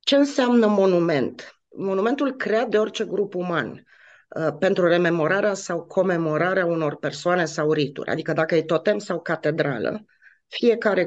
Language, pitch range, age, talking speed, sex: Romanian, 155-210 Hz, 30-49, 130 wpm, female